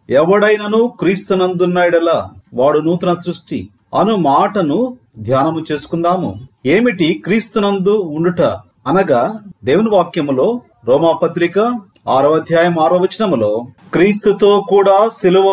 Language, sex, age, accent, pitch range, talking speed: Telugu, male, 40-59, native, 165-215 Hz, 90 wpm